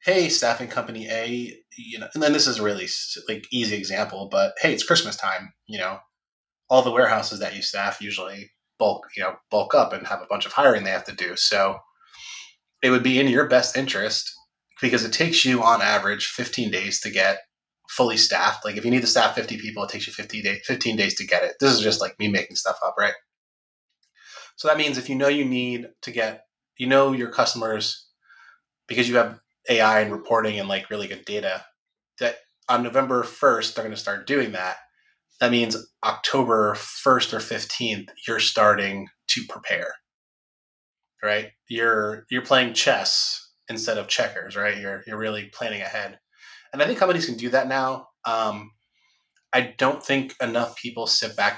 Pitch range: 105-130 Hz